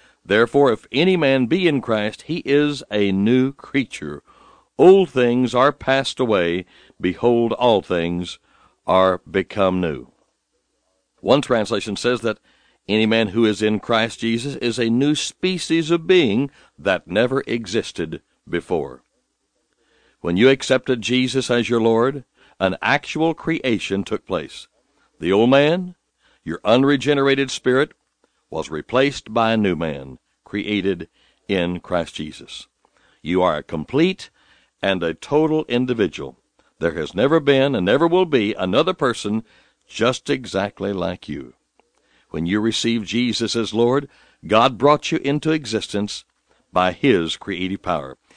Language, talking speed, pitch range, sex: English, 135 wpm, 100-140 Hz, male